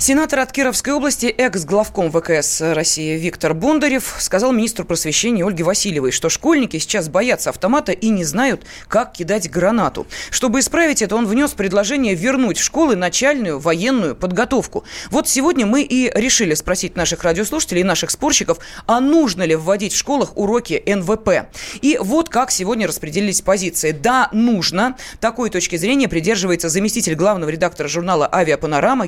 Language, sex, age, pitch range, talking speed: Russian, female, 20-39, 175-255 Hz, 150 wpm